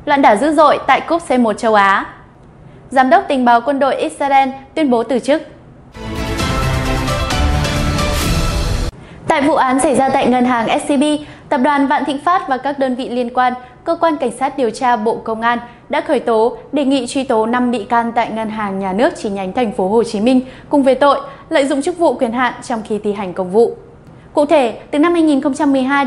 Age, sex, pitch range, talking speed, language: 10-29, female, 225-285 Hz, 210 wpm, Vietnamese